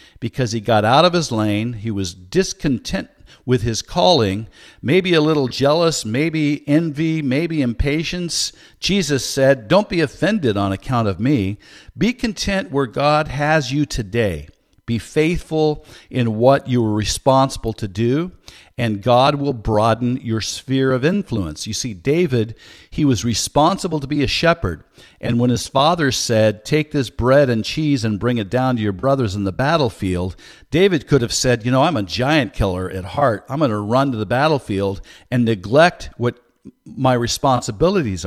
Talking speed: 170 wpm